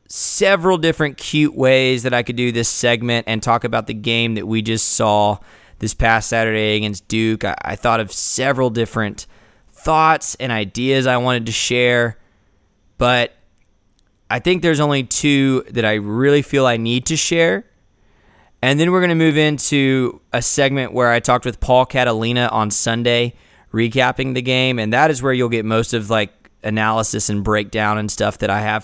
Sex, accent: male, American